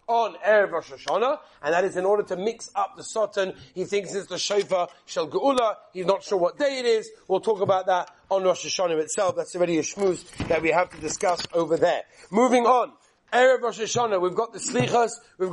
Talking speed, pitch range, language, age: 215 wpm, 185-230 Hz, English, 30-49